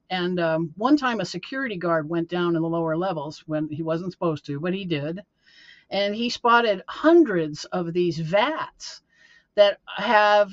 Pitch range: 165-220 Hz